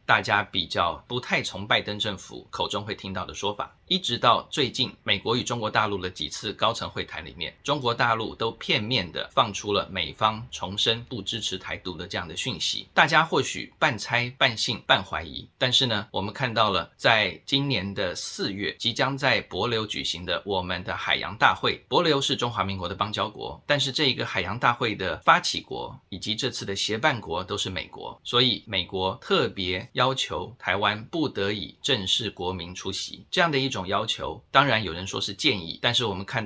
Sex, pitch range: male, 95-125 Hz